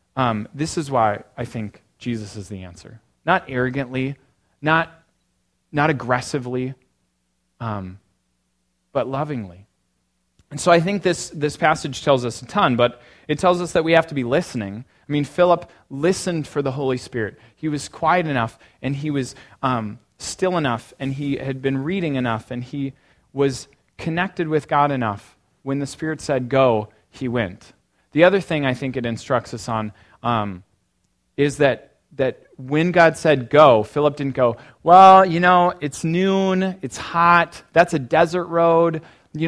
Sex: male